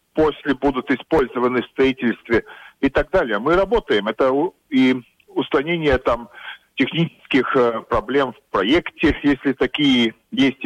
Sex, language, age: male, Russian, 40-59